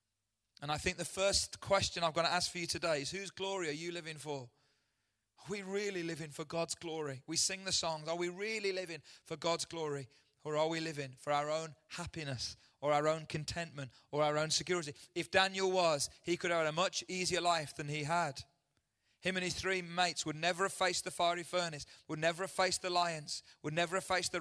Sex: male